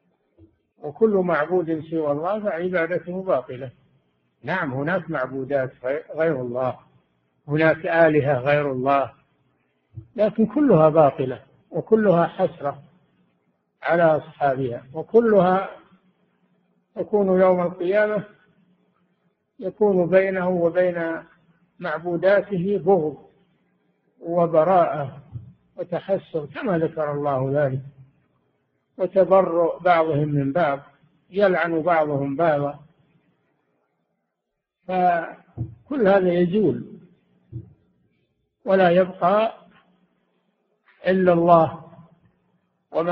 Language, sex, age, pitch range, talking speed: Arabic, male, 60-79, 135-185 Hz, 75 wpm